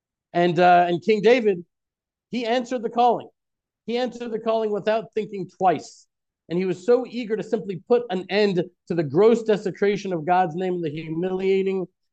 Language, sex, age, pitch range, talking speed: English, male, 40-59, 180-230 Hz, 180 wpm